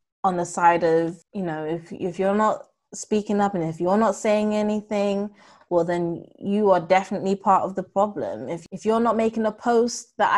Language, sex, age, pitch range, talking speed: English, female, 20-39, 185-220 Hz, 200 wpm